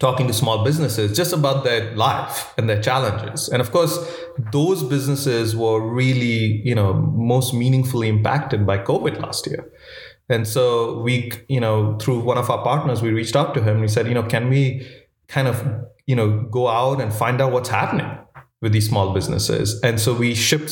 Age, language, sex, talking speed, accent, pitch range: 30-49, English, male, 195 wpm, Indian, 110-130 Hz